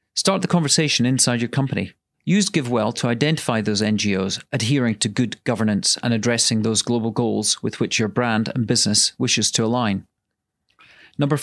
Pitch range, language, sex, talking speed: 110-130 Hz, English, male, 165 wpm